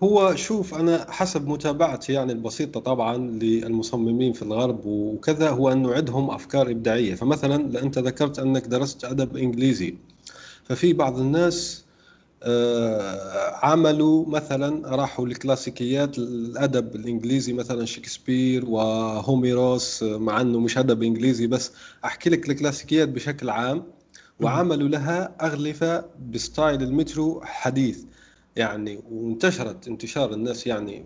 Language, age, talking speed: Arabic, 30-49, 115 wpm